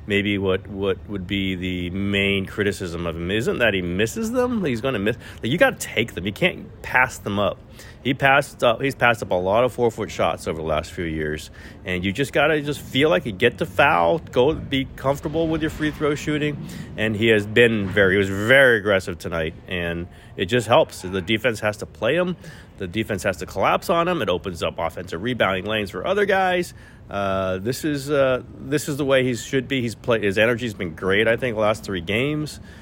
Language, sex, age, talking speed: English, male, 30-49, 230 wpm